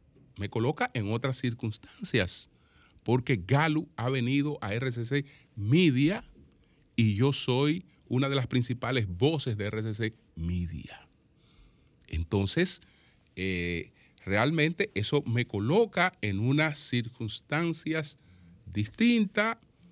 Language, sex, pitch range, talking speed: Spanish, male, 115-170 Hz, 100 wpm